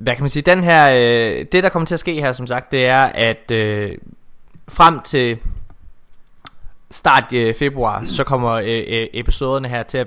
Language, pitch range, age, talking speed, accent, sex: Danish, 115-155 Hz, 20-39, 195 wpm, native, male